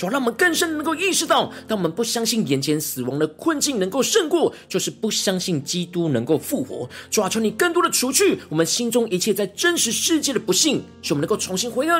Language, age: Chinese, 40-59